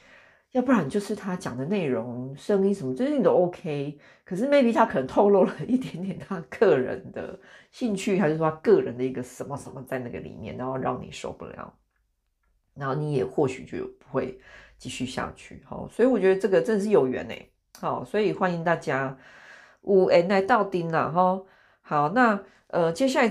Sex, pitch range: female, 130-195 Hz